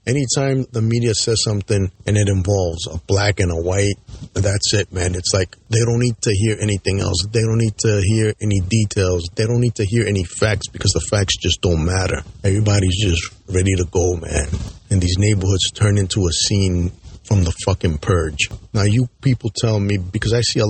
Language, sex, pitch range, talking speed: English, male, 95-110 Hz, 205 wpm